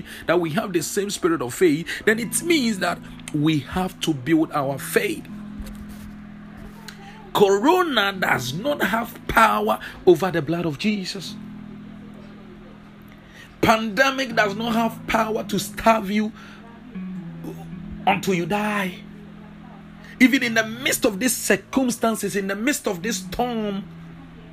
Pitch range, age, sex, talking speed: 165-225 Hz, 50-69, male, 125 wpm